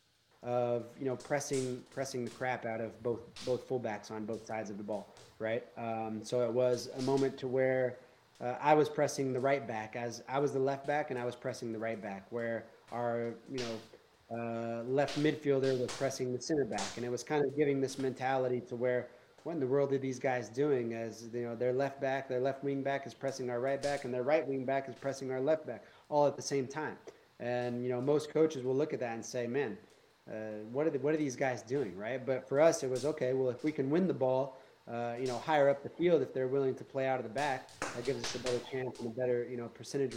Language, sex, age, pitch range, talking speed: English, male, 30-49, 115-135 Hz, 255 wpm